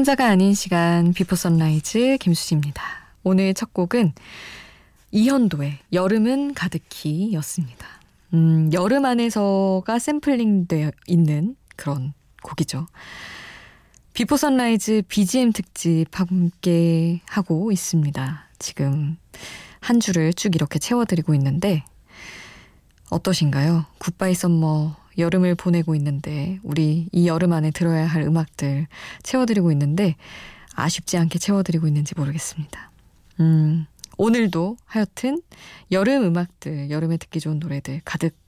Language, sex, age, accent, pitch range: Korean, female, 20-39, native, 155-200 Hz